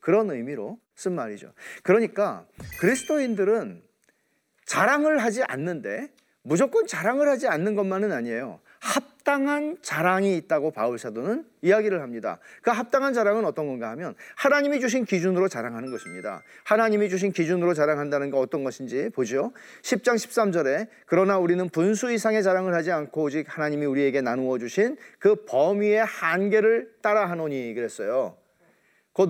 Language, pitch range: Korean, 165-230 Hz